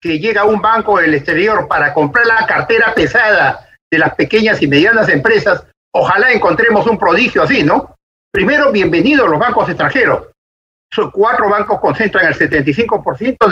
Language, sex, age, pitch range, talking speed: Spanish, male, 50-69, 165-215 Hz, 160 wpm